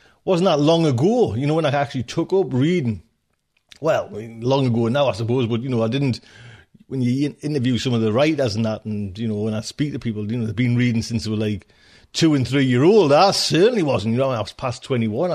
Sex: male